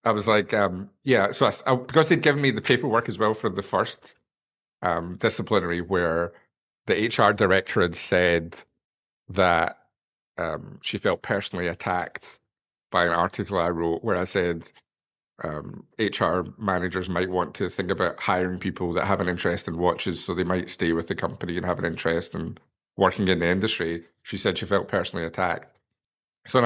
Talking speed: 175 wpm